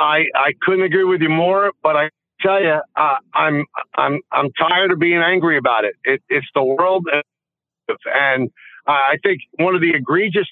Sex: male